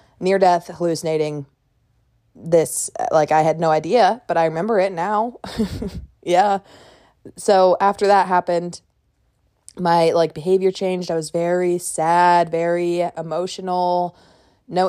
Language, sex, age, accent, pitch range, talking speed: English, female, 20-39, American, 165-185 Hz, 120 wpm